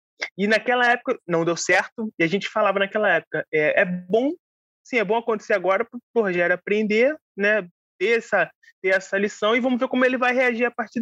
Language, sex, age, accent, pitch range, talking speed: Portuguese, male, 20-39, Brazilian, 175-230 Hz, 210 wpm